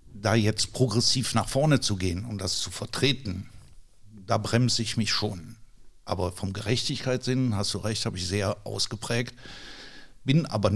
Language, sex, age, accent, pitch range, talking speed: German, male, 60-79, German, 105-130 Hz, 155 wpm